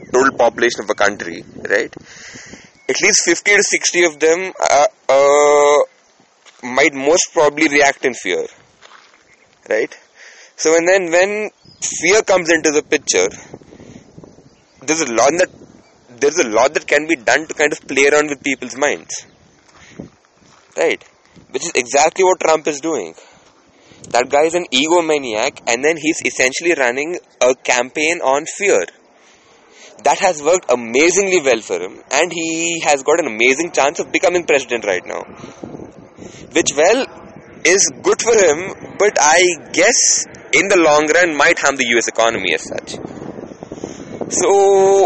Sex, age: male, 20-39